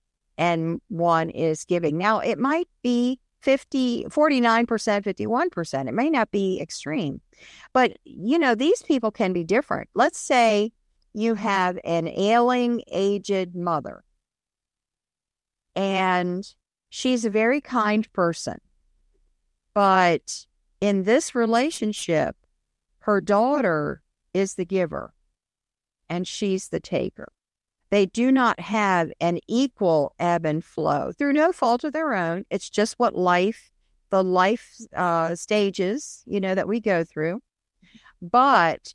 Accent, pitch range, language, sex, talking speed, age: American, 185-250 Hz, English, female, 125 wpm, 50-69